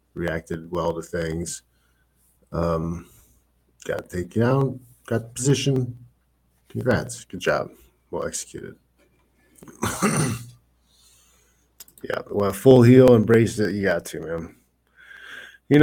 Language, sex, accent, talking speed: English, male, American, 105 wpm